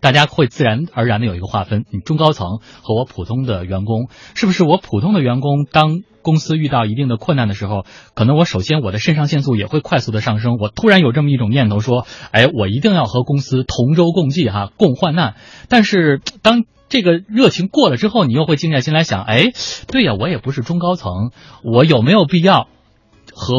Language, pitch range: Chinese, 110-150 Hz